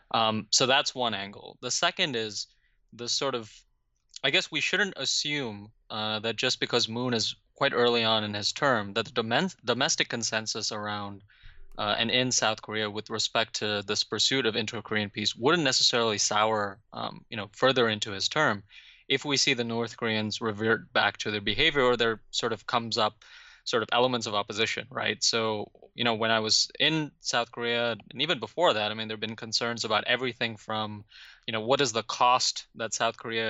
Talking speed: 200 wpm